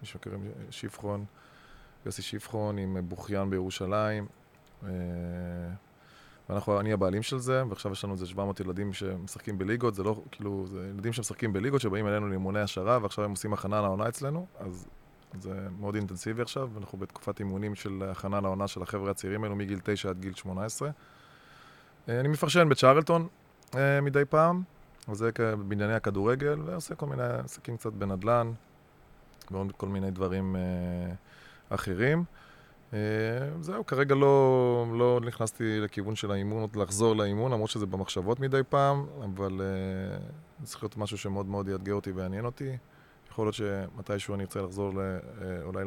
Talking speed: 145 wpm